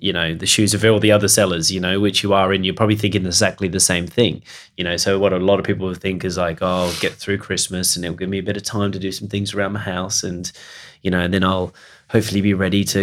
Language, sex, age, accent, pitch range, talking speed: English, male, 20-39, Australian, 90-105 Hz, 290 wpm